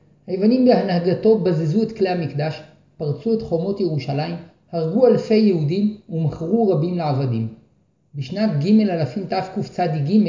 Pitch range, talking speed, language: 150-195 Hz, 120 wpm, Hebrew